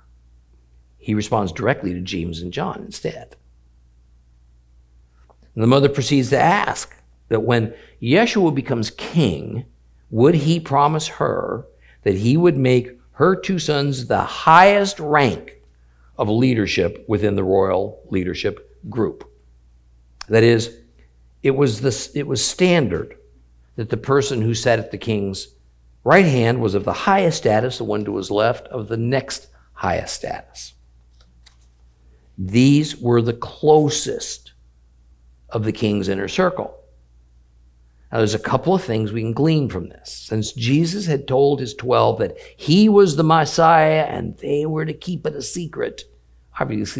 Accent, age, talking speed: American, 50-69, 140 wpm